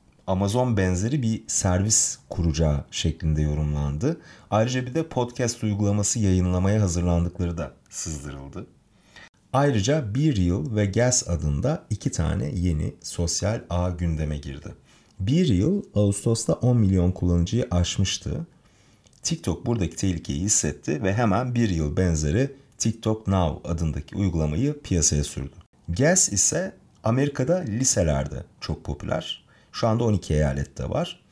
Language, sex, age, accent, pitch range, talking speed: Turkish, male, 40-59, native, 85-120 Hz, 120 wpm